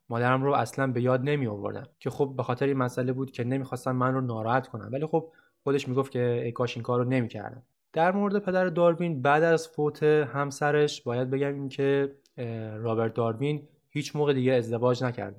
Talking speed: 190 wpm